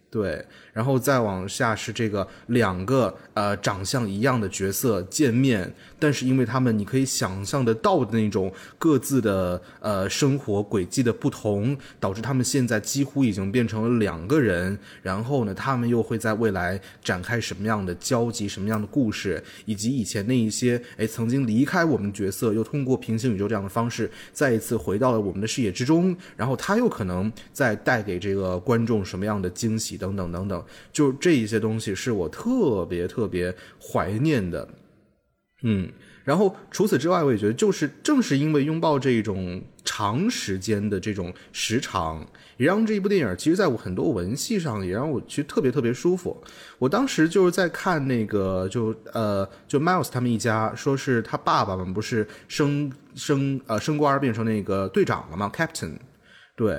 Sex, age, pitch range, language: male, 20-39, 100-135 Hz, Chinese